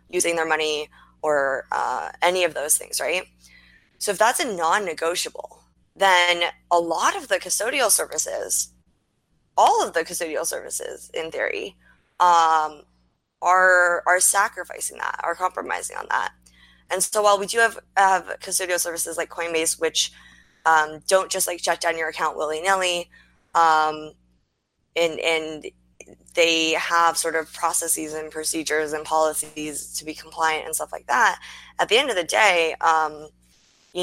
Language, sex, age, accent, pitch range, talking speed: English, female, 20-39, American, 155-180 Hz, 155 wpm